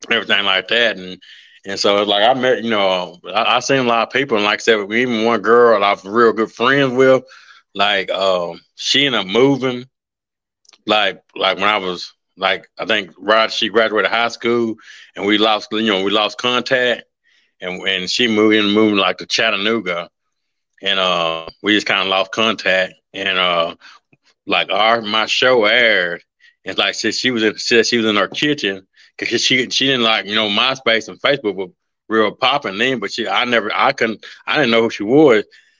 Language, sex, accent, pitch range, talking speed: English, male, American, 100-125 Hz, 200 wpm